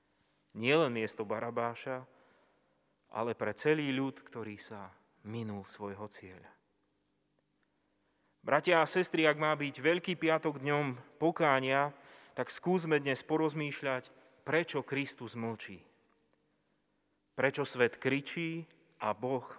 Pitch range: 125-160 Hz